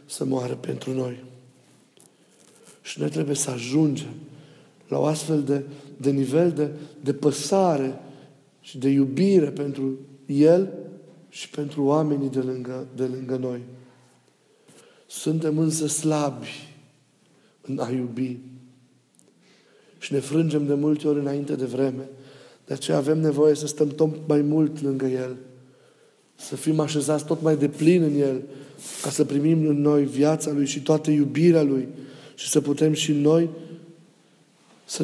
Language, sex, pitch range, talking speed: Romanian, male, 135-155 Hz, 140 wpm